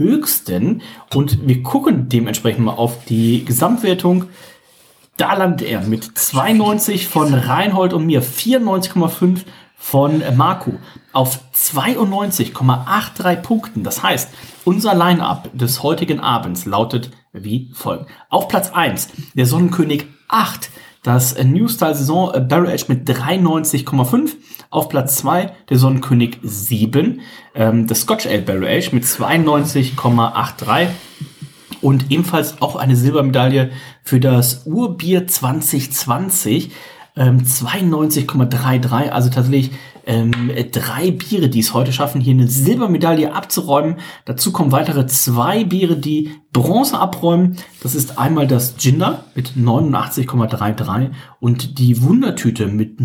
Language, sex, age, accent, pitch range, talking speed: German, male, 40-59, German, 125-170 Hz, 115 wpm